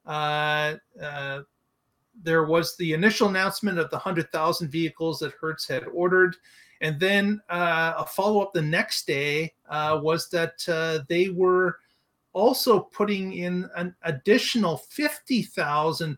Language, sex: English, male